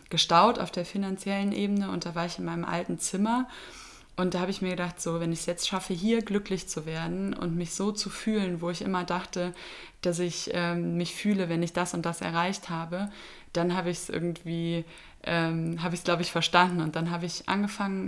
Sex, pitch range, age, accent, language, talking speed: female, 165-190 Hz, 20-39, German, German, 220 wpm